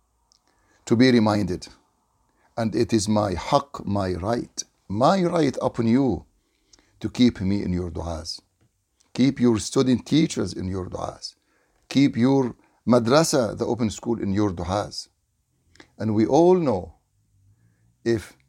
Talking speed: 135 wpm